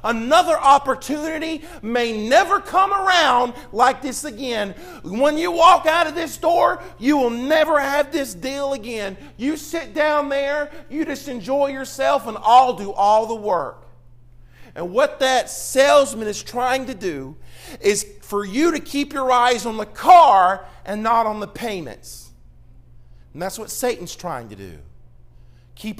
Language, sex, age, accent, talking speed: English, male, 40-59, American, 155 wpm